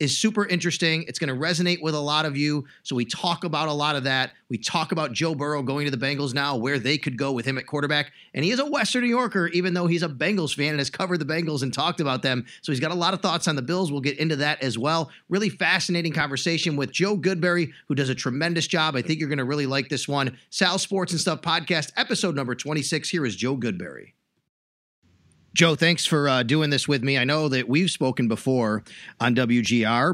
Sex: male